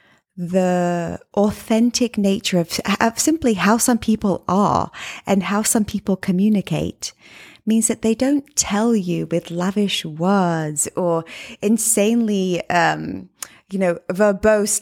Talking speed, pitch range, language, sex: 120 wpm, 180-220 Hz, English, female